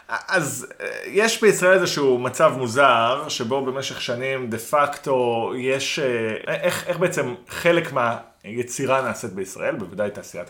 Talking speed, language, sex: 120 wpm, Hebrew, male